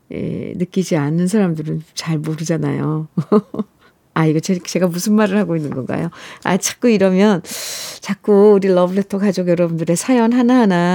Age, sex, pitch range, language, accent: 50-69, female, 170-230 Hz, Korean, native